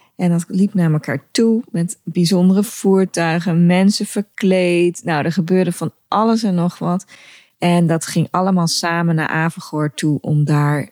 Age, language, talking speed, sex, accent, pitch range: 20-39, Dutch, 160 wpm, female, Dutch, 155-190 Hz